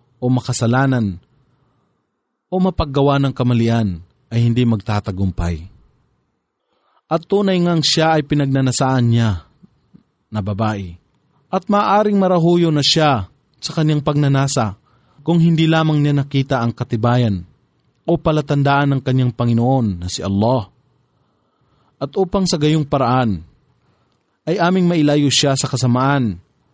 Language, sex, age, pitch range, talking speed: English, male, 30-49, 120-150 Hz, 115 wpm